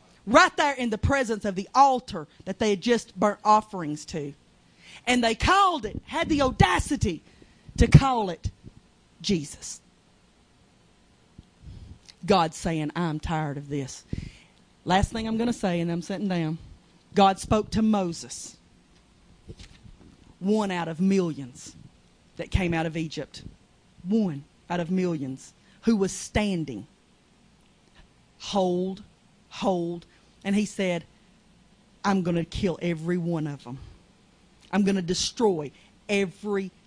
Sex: female